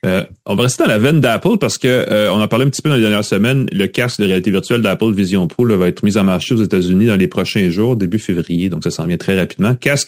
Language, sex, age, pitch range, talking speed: French, male, 30-49, 95-130 Hz, 300 wpm